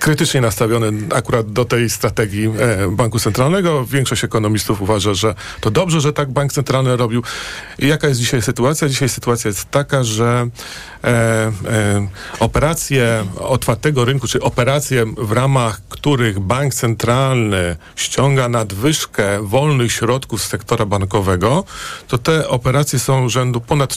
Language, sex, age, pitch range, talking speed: Polish, male, 40-59, 110-140 Hz, 130 wpm